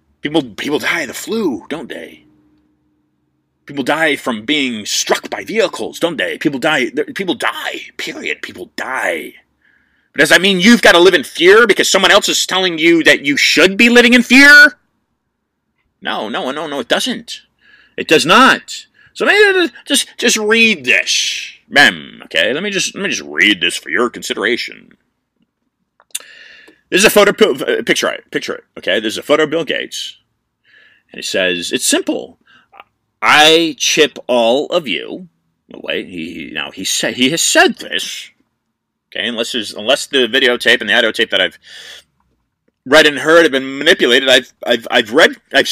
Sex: male